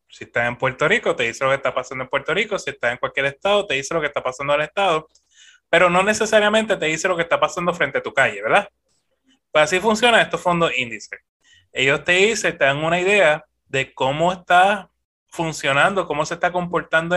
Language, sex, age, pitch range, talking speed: Spanish, male, 20-39, 135-185 Hz, 215 wpm